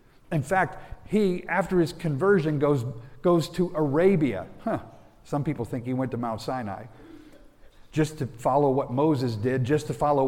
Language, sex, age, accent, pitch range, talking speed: English, male, 50-69, American, 125-165 Hz, 165 wpm